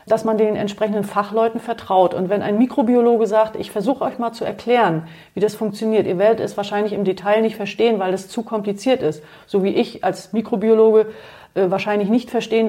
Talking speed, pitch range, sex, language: 195 wpm, 190-230 Hz, female, German